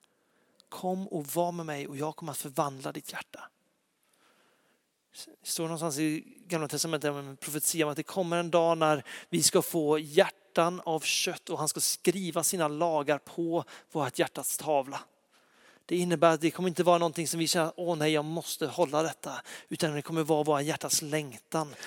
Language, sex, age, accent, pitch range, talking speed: Swedish, male, 40-59, native, 150-170 Hz, 190 wpm